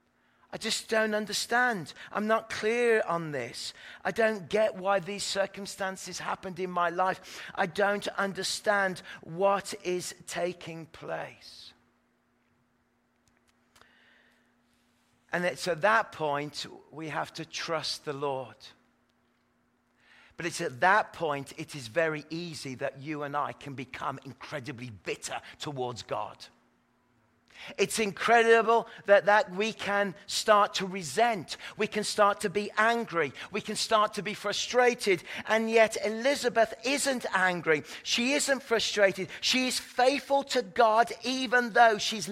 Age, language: 40-59, English